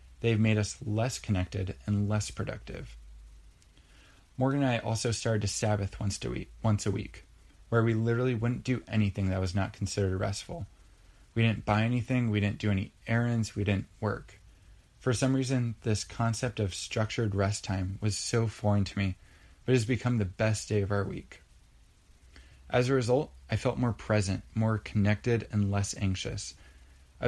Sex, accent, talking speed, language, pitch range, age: male, American, 180 wpm, English, 95-115 Hz, 20-39